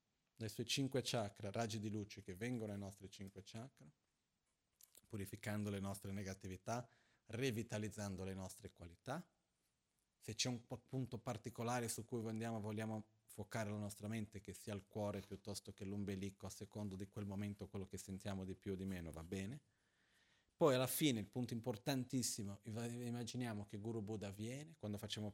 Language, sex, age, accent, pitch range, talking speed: Italian, male, 40-59, native, 100-120 Hz, 165 wpm